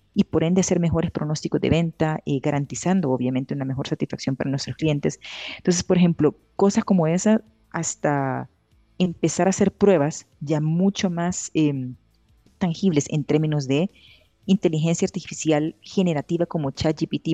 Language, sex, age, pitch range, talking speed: Spanish, female, 30-49, 145-175 Hz, 140 wpm